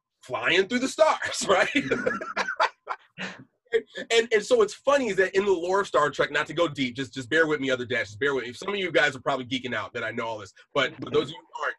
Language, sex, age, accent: English, male, 30-49, American